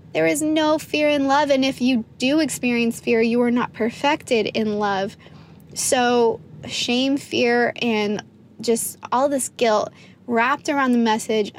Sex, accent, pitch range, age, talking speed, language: female, American, 215-255 Hz, 20-39, 155 wpm, English